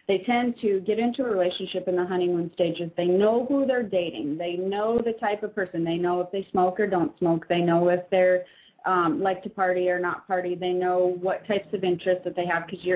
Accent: American